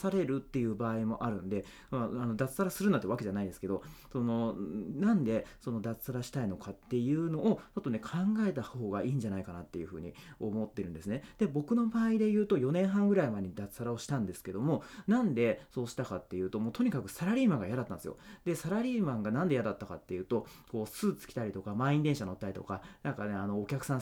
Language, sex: Japanese, male